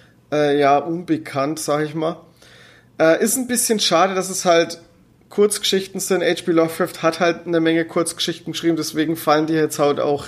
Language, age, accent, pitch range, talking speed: German, 30-49, German, 150-180 Hz, 175 wpm